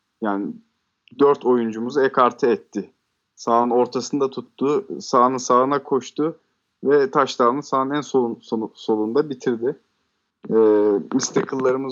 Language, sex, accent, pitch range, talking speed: Turkish, male, native, 120-155 Hz, 90 wpm